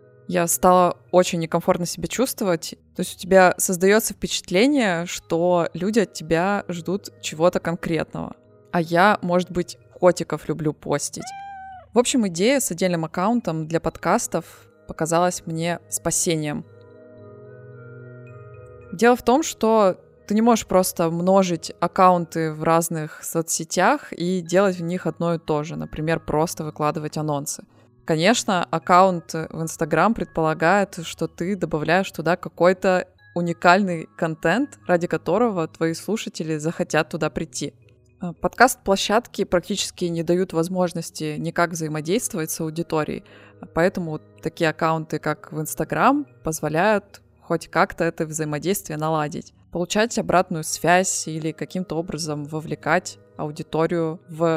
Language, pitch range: Russian, 160-185 Hz